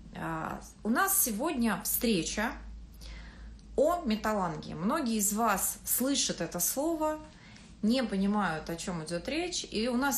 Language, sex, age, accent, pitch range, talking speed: Russian, female, 30-49, native, 175-235 Hz, 125 wpm